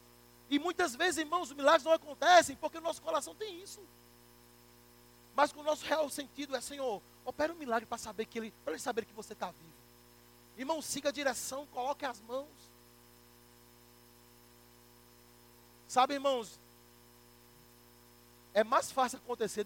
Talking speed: 145 wpm